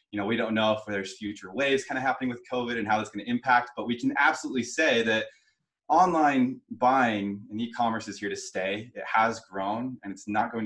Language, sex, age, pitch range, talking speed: English, male, 20-39, 105-175 Hz, 230 wpm